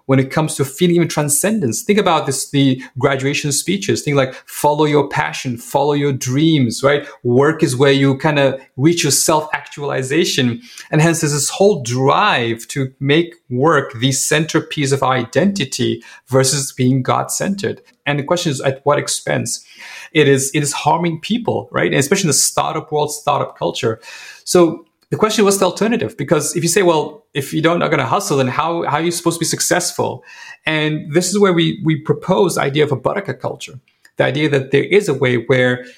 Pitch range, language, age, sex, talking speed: 135-170 Hz, English, 30-49, male, 200 wpm